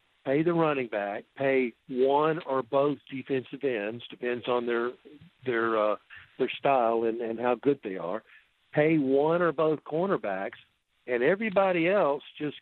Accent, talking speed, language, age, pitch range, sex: American, 150 wpm, English, 50-69, 120-145 Hz, male